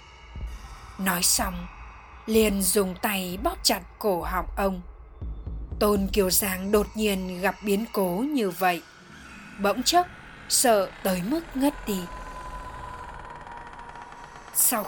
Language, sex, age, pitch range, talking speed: Vietnamese, female, 20-39, 180-220 Hz, 115 wpm